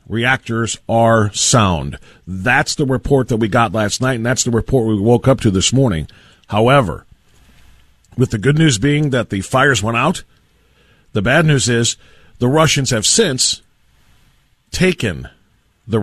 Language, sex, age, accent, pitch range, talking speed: English, male, 50-69, American, 105-140 Hz, 155 wpm